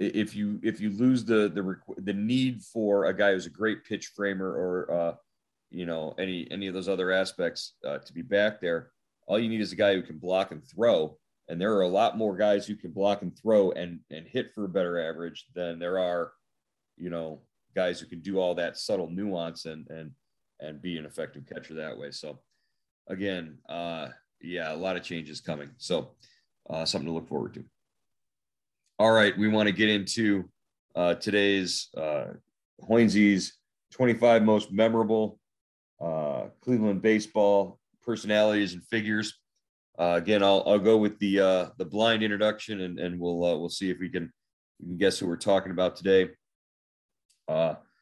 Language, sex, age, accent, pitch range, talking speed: English, male, 40-59, American, 90-110 Hz, 185 wpm